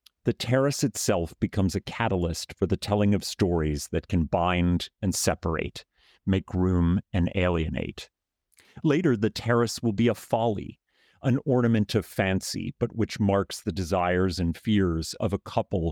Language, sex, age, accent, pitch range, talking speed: English, male, 40-59, American, 85-110 Hz, 155 wpm